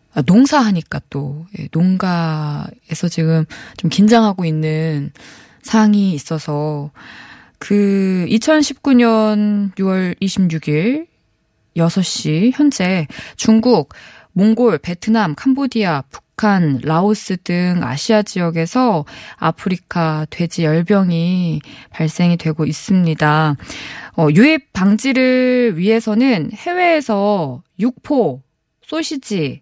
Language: Korean